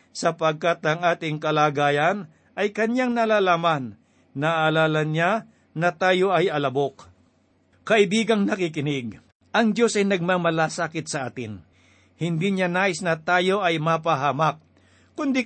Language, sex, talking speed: Filipino, male, 115 wpm